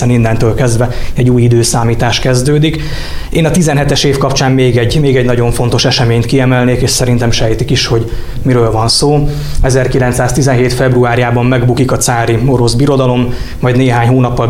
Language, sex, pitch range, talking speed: Hungarian, male, 120-135 Hz, 155 wpm